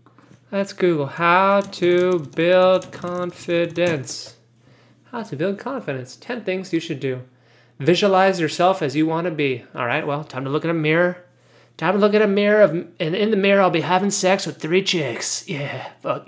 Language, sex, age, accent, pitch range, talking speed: English, male, 30-49, American, 135-185 Hz, 190 wpm